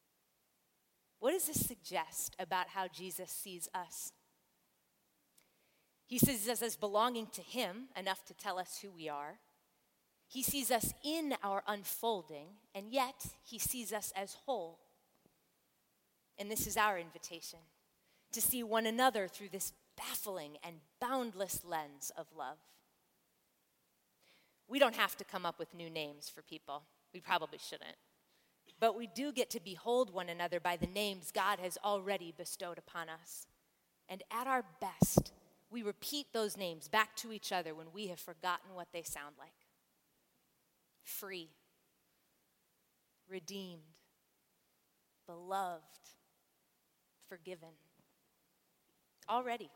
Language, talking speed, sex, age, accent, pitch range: English, 130 wpm, female, 30-49, American, 170-230 Hz